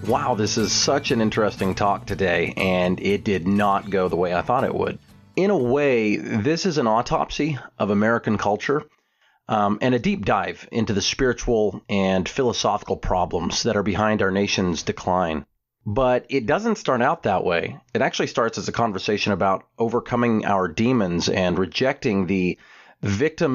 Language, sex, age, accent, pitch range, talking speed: English, male, 30-49, American, 100-130 Hz, 170 wpm